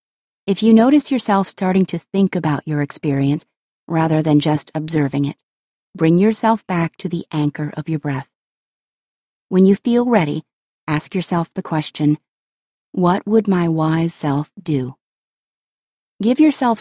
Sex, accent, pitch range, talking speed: female, American, 150-195 Hz, 145 wpm